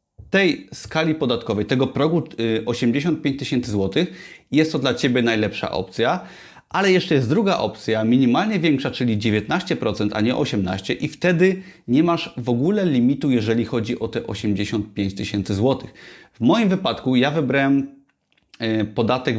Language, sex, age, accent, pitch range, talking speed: Polish, male, 30-49, native, 115-150 Hz, 140 wpm